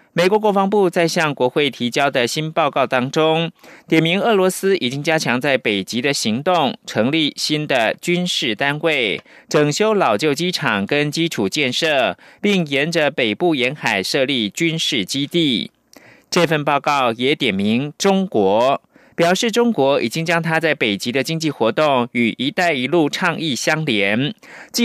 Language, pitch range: German, 140-185 Hz